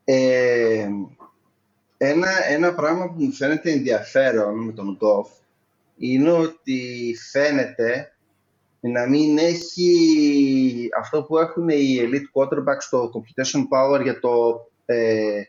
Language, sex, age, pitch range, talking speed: Greek, male, 30-49, 125-155 Hz, 110 wpm